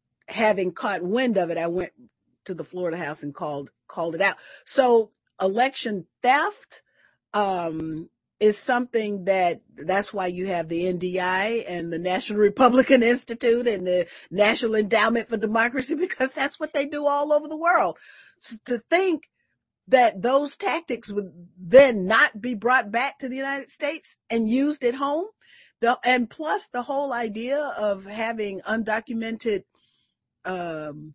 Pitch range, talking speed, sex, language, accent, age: 190-260 Hz, 155 wpm, female, English, American, 40-59